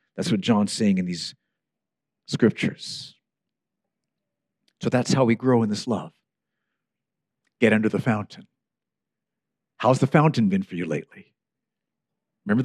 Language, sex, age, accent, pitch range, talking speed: English, male, 50-69, American, 115-180 Hz, 130 wpm